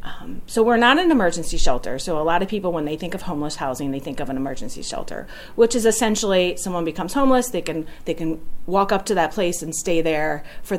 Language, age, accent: English, 40-59, American